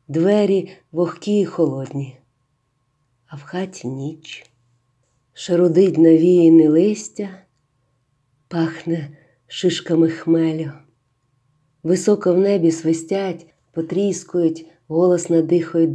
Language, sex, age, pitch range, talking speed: Ukrainian, female, 40-59, 135-180 Hz, 80 wpm